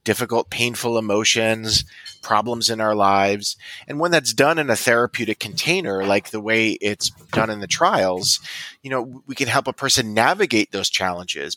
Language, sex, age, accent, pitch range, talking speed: English, male, 30-49, American, 105-125 Hz, 170 wpm